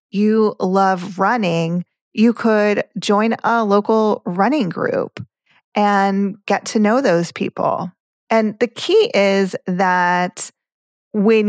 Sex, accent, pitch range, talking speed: female, American, 170-215 Hz, 115 wpm